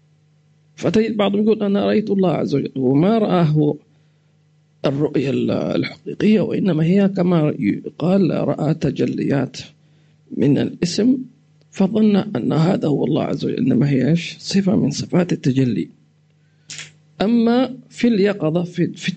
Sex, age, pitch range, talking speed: male, 50-69, 150-200 Hz, 115 wpm